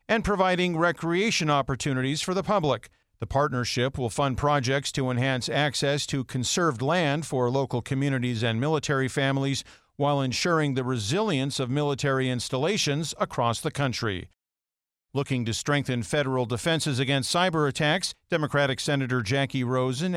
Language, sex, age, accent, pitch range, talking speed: English, male, 50-69, American, 125-160 Hz, 135 wpm